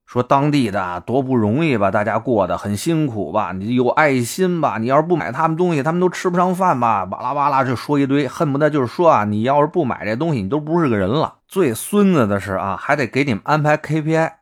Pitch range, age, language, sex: 100-165 Hz, 30-49, Chinese, male